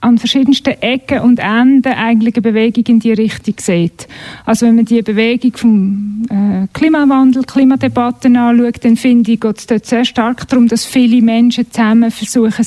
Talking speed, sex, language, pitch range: 165 wpm, female, German, 215-255 Hz